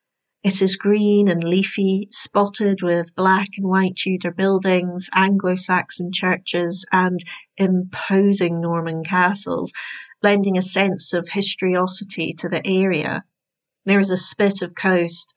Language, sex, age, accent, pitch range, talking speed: English, female, 40-59, British, 175-205 Hz, 125 wpm